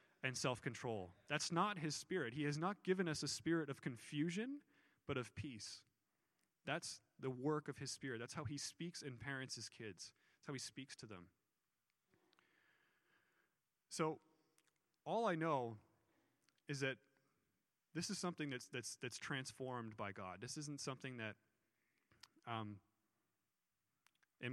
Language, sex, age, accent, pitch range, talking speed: English, male, 30-49, American, 115-150 Hz, 145 wpm